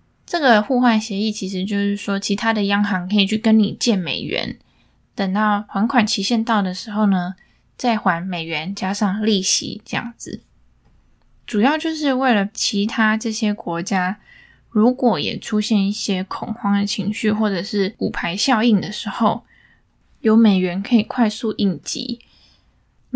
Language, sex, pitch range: Chinese, female, 195-230 Hz